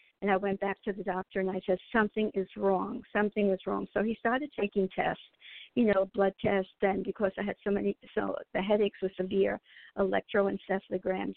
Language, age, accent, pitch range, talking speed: English, 50-69, American, 190-205 Hz, 195 wpm